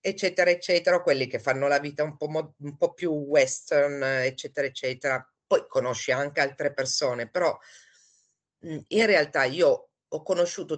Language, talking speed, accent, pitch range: Italian, 150 wpm, native, 145-190 Hz